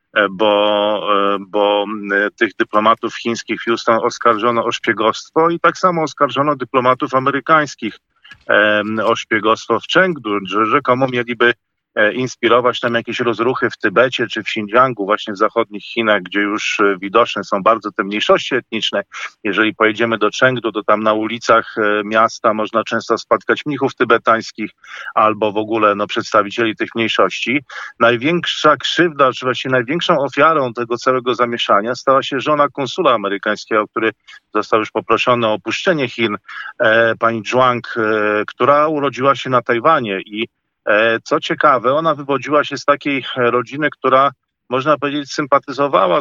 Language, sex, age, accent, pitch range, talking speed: Polish, male, 40-59, native, 110-130 Hz, 135 wpm